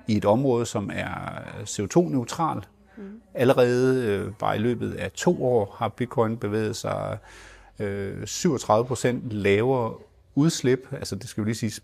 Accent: native